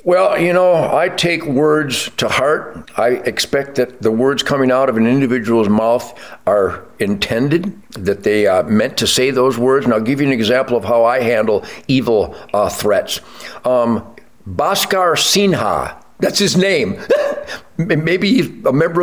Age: 60-79